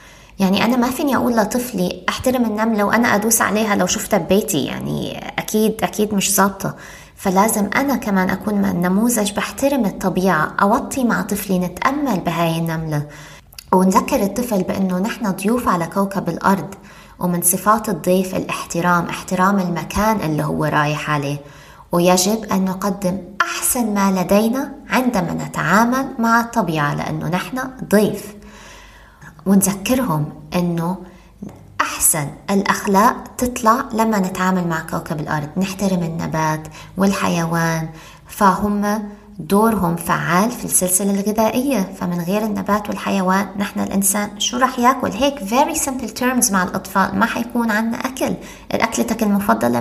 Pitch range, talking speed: 180-220 Hz, 125 wpm